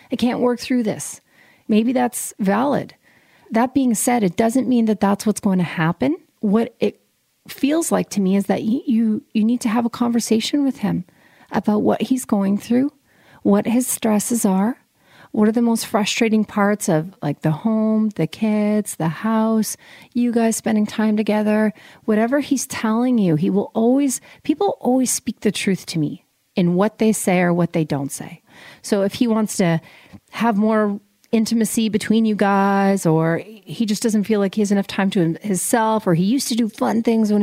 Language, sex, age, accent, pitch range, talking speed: English, female, 40-59, American, 200-240 Hz, 190 wpm